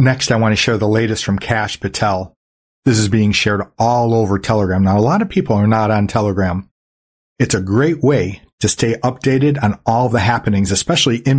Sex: male